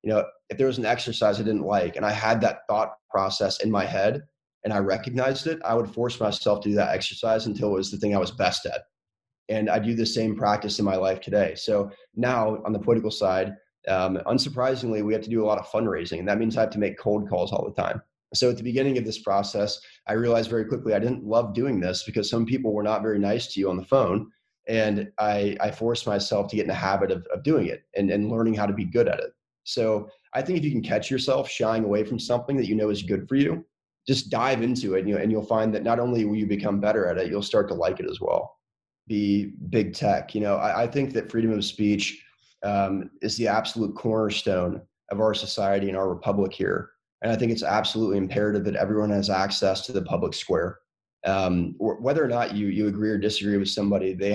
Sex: male